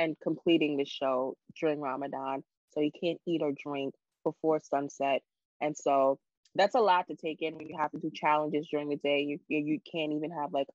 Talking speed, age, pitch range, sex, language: 205 wpm, 20-39, 145-175 Hz, female, English